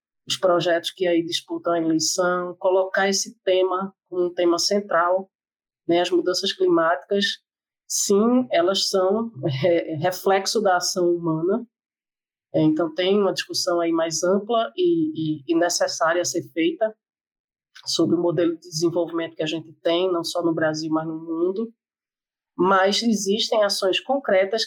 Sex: female